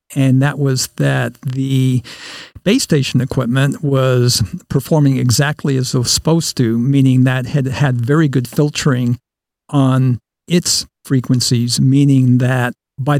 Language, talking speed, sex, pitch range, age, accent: English, 130 wpm, male, 125-140 Hz, 50-69, American